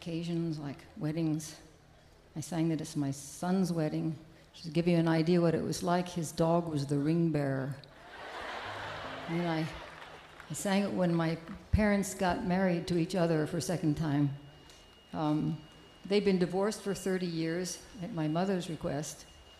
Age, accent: 60-79, American